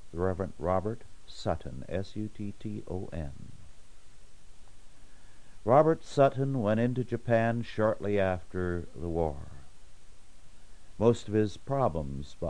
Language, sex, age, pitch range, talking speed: English, male, 60-79, 85-115 Hz, 80 wpm